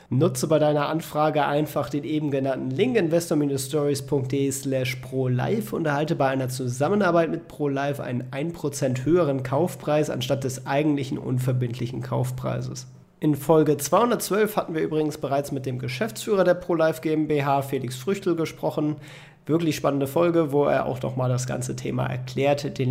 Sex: male